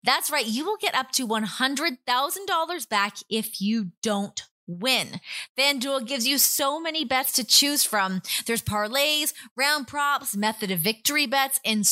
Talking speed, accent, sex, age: 155 wpm, American, female, 20-39